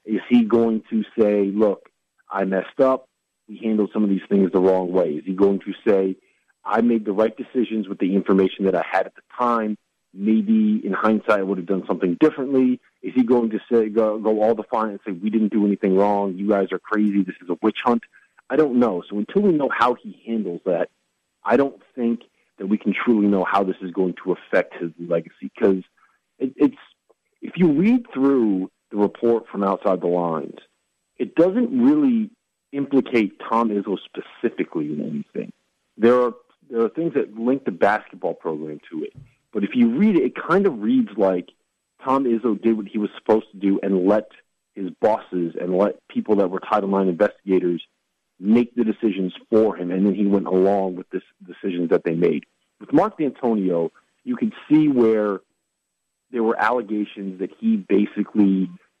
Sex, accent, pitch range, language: male, American, 95-125 Hz, English